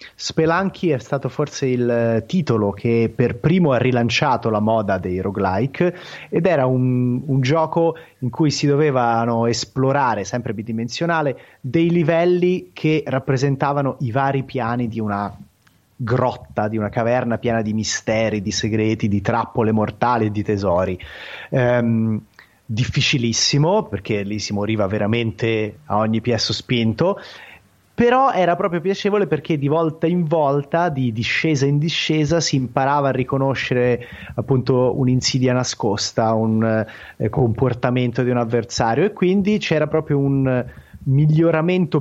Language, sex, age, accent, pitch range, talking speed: Italian, male, 30-49, native, 115-155 Hz, 135 wpm